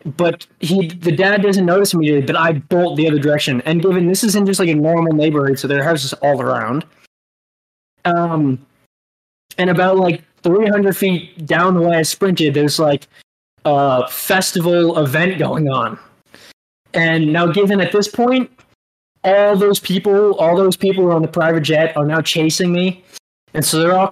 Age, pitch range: 20-39, 150-185 Hz